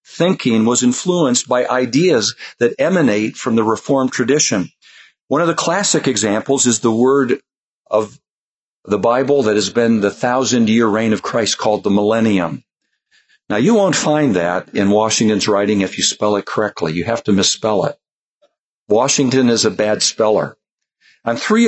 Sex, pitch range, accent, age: male, 100-135 Hz, American, 50-69